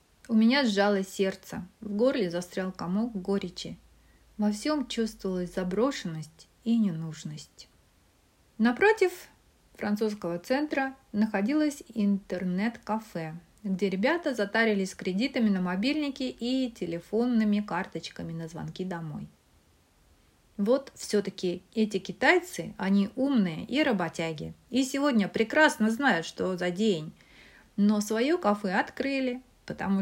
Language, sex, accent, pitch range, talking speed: Russian, female, native, 185-255 Hz, 105 wpm